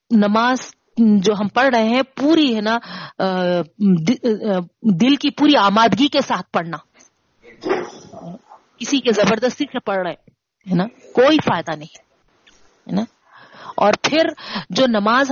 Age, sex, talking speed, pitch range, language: 40-59, female, 120 wpm, 195-255 Hz, Urdu